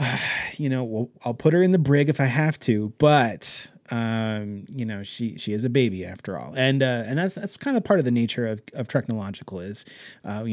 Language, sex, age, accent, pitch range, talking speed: English, male, 30-49, American, 110-140 Hz, 235 wpm